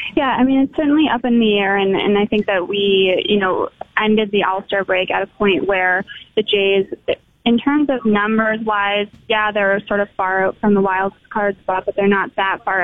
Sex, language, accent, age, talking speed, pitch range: female, English, American, 20-39, 220 wpm, 190-215 Hz